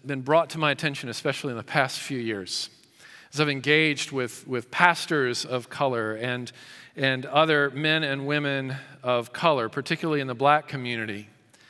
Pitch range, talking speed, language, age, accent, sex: 125-155 Hz, 165 wpm, English, 40-59, American, male